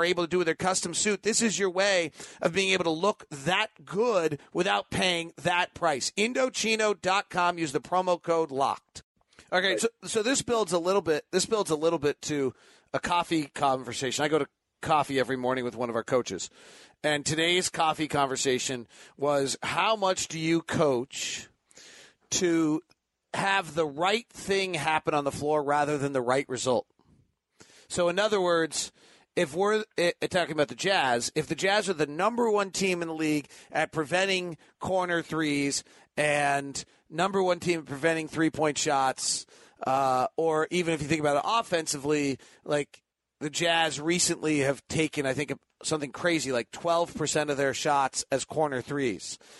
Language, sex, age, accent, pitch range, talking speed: English, male, 40-59, American, 145-185 Hz, 170 wpm